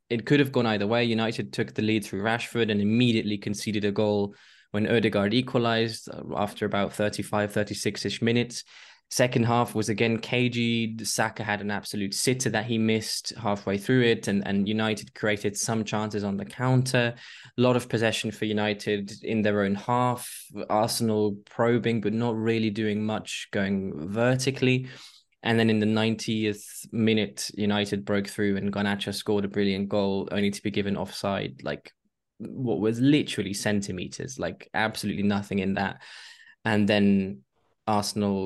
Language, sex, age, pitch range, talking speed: English, male, 20-39, 100-115 Hz, 160 wpm